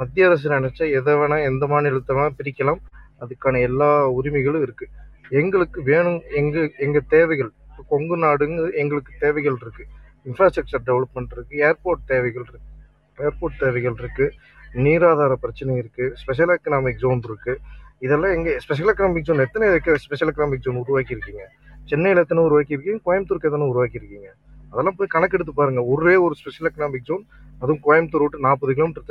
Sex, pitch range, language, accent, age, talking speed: male, 130-160 Hz, Tamil, native, 30-49, 140 wpm